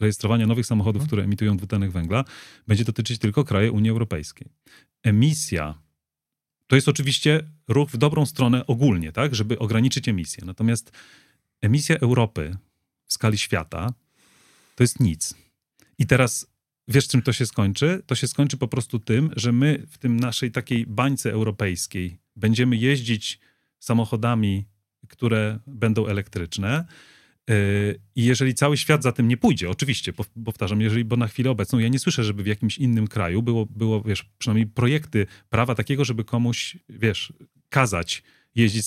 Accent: native